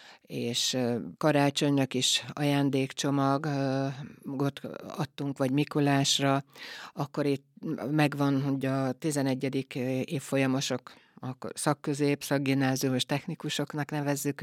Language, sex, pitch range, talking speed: Hungarian, female, 130-145 Hz, 80 wpm